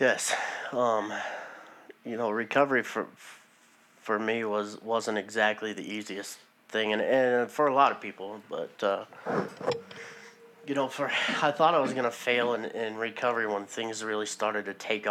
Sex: male